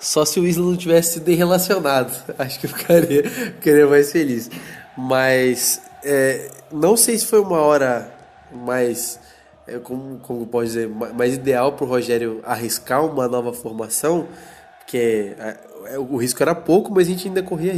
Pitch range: 115-150 Hz